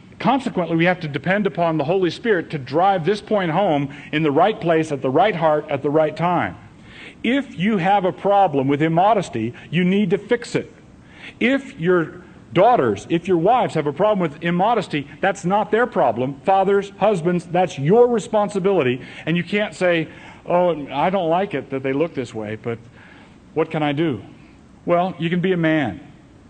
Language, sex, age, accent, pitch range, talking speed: English, male, 50-69, American, 150-190 Hz, 190 wpm